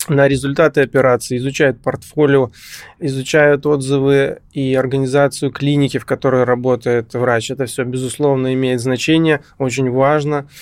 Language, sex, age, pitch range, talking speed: Russian, male, 20-39, 125-145 Hz, 120 wpm